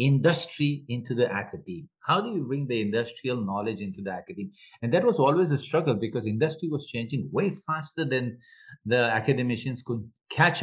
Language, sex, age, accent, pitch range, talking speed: English, male, 50-69, Indian, 100-145 Hz, 175 wpm